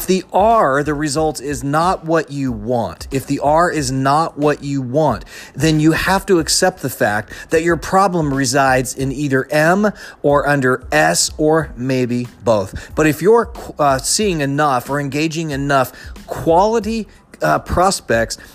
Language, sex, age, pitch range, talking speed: English, male, 40-59, 125-165 Hz, 160 wpm